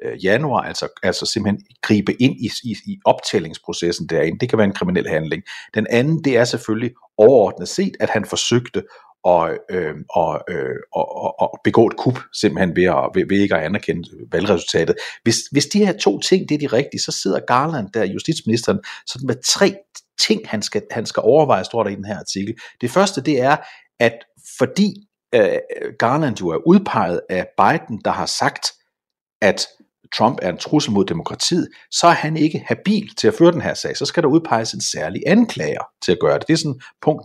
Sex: male